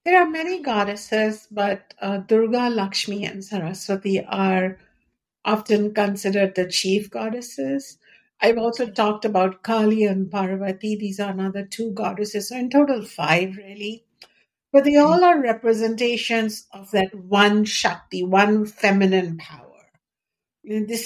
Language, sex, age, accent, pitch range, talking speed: English, female, 60-79, Indian, 190-225 Hz, 130 wpm